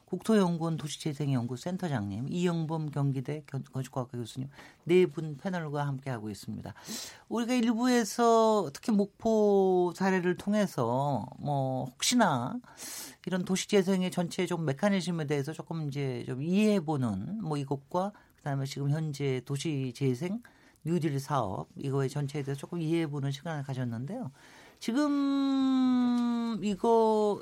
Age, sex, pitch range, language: 40-59, male, 145-220 Hz, Korean